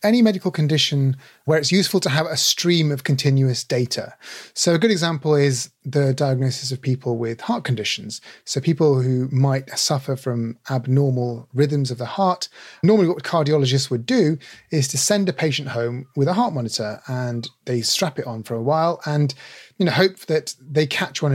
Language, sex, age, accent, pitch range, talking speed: English, male, 30-49, British, 125-165 Hz, 185 wpm